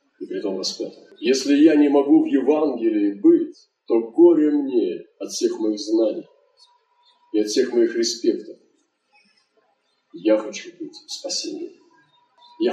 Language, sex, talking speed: Russian, male, 130 wpm